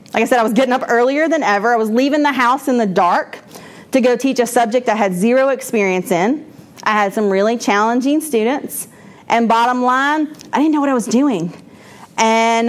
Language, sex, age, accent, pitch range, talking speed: English, female, 40-59, American, 210-270 Hz, 215 wpm